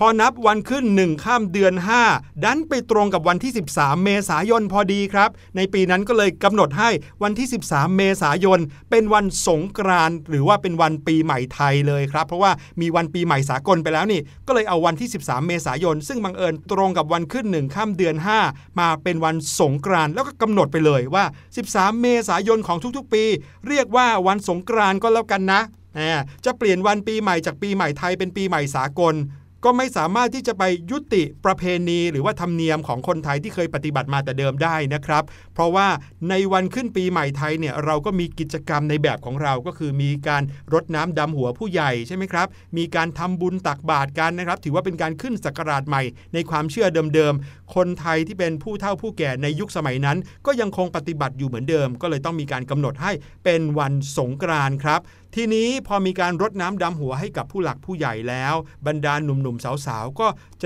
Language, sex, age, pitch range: Thai, male, 60-79, 150-200 Hz